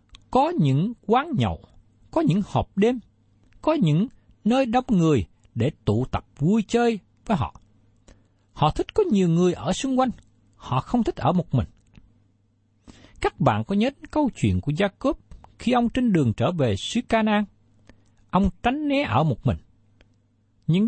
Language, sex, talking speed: Vietnamese, male, 165 wpm